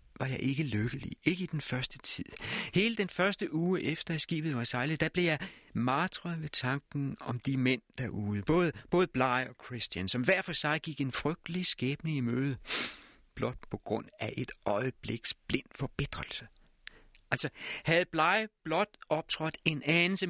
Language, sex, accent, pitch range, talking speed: Danish, male, native, 105-160 Hz, 175 wpm